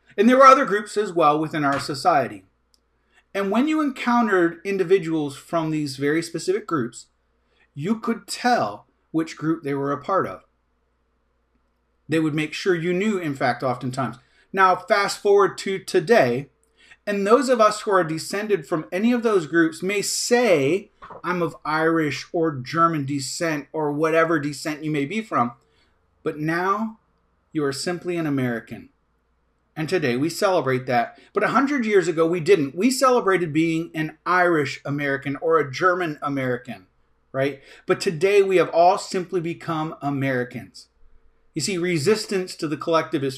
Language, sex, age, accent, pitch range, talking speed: English, male, 40-59, American, 140-195 Hz, 160 wpm